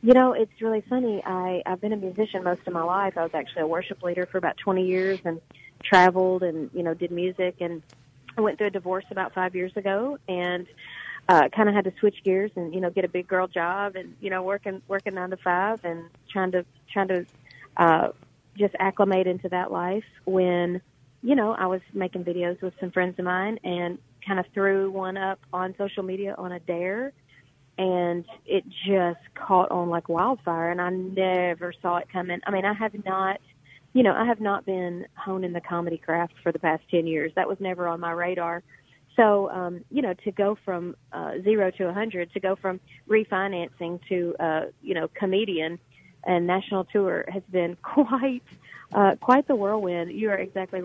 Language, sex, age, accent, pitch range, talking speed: English, female, 30-49, American, 175-195 Hz, 205 wpm